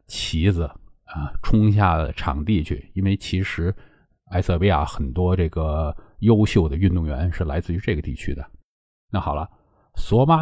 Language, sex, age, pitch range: Chinese, male, 50-69, 80-100 Hz